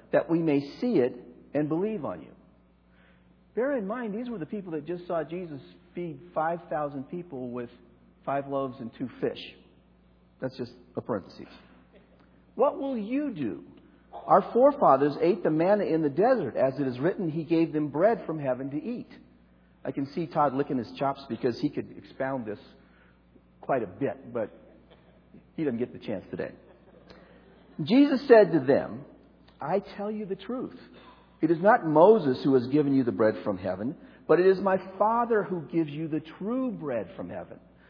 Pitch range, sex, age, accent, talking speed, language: 135-205 Hz, male, 50-69, American, 180 wpm, English